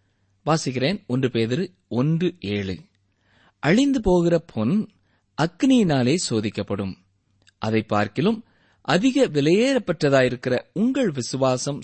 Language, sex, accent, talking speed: Tamil, male, native, 80 wpm